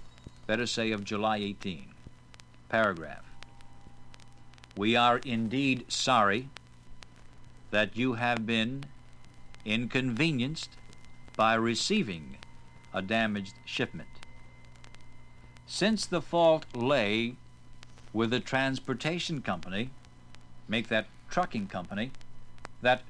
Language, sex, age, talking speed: English, male, 60-79, 85 wpm